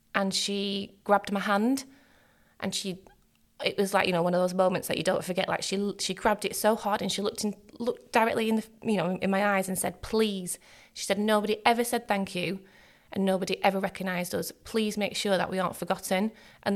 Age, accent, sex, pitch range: 20-39, British, female, 190-215 Hz